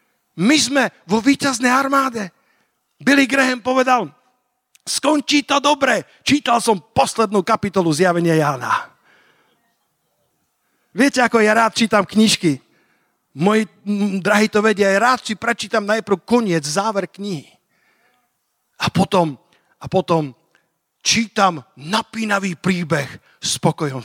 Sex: male